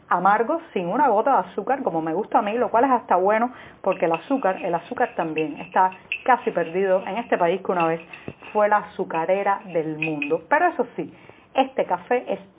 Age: 40-59